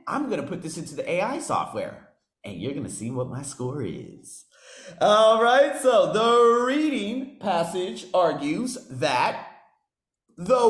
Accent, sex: American, male